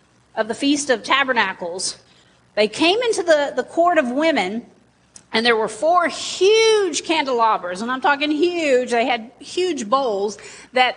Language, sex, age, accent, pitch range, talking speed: English, female, 40-59, American, 215-290 Hz, 155 wpm